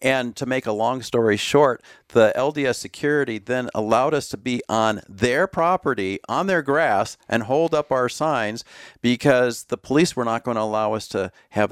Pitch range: 105-135 Hz